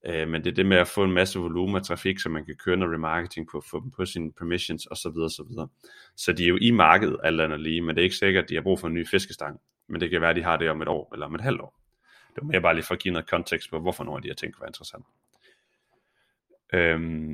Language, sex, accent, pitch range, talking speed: Danish, male, native, 80-95 Hz, 285 wpm